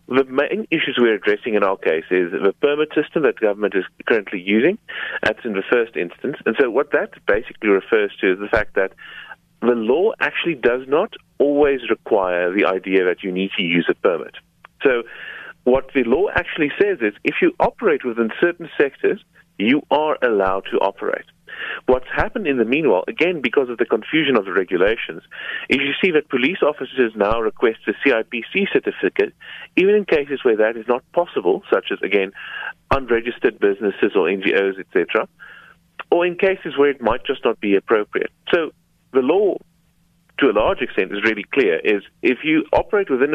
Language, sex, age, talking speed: English, male, 40-59, 185 wpm